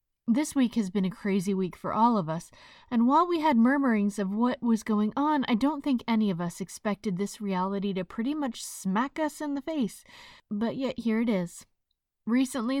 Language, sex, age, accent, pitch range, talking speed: English, female, 20-39, American, 210-275 Hz, 205 wpm